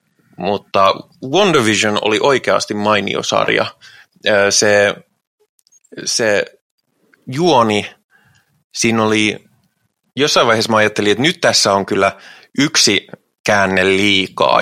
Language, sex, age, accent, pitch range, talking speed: Finnish, male, 20-39, native, 95-110 Hz, 100 wpm